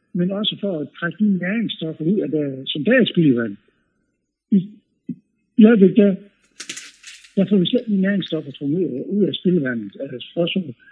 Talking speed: 155 wpm